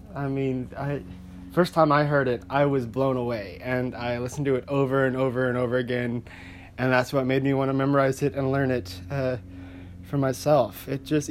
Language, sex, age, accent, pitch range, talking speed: English, male, 30-49, American, 120-155 Hz, 210 wpm